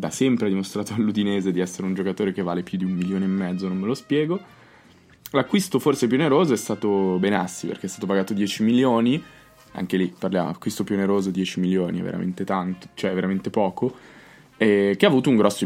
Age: 20-39